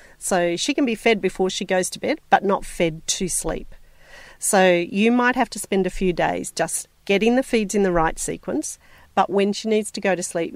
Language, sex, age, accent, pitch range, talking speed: English, female, 40-59, Australian, 175-220 Hz, 225 wpm